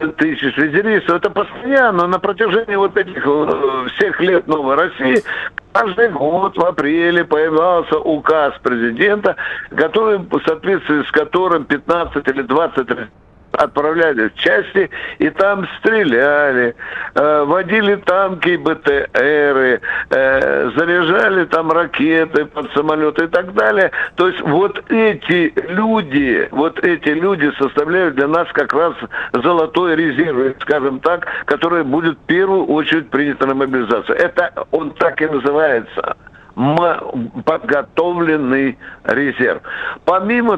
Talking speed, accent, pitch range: 115 wpm, native, 145-190 Hz